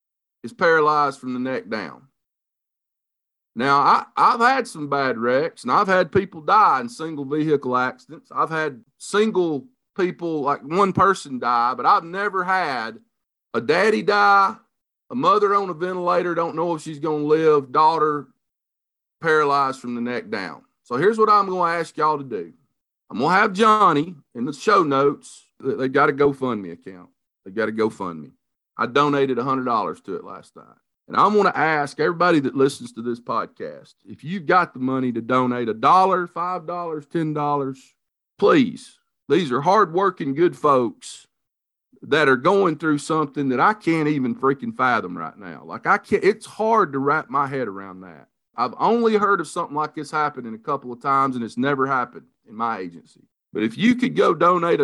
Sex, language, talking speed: male, English, 185 wpm